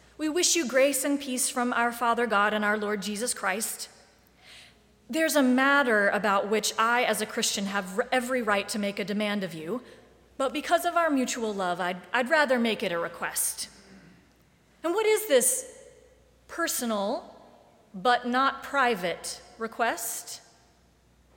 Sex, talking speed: female, 155 wpm